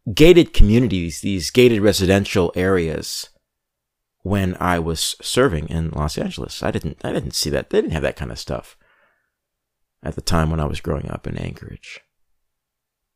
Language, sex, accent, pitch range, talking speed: English, male, American, 80-110 Hz, 165 wpm